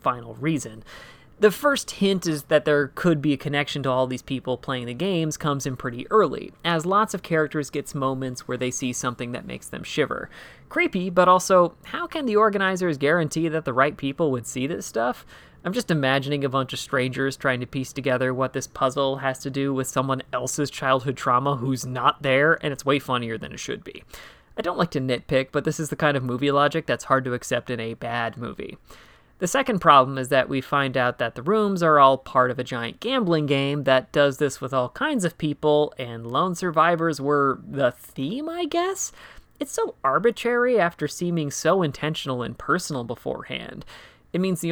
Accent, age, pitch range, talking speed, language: American, 30-49, 130-165 Hz, 210 wpm, English